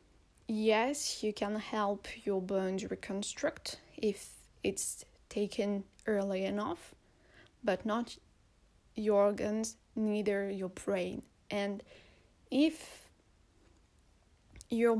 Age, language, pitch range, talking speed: 20-39, English, 195-230 Hz, 90 wpm